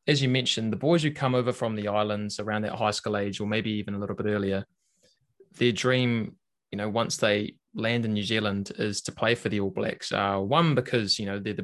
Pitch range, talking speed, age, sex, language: 100-125 Hz, 240 wpm, 20-39, male, English